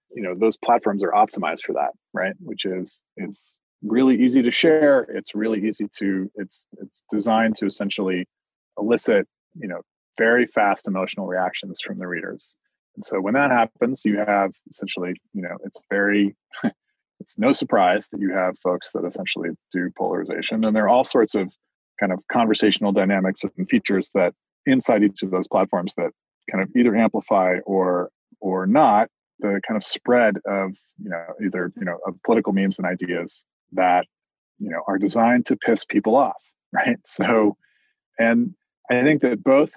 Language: English